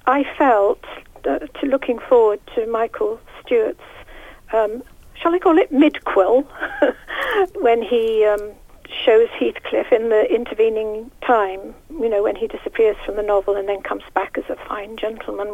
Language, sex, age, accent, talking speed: English, female, 60-79, British, 150 wpm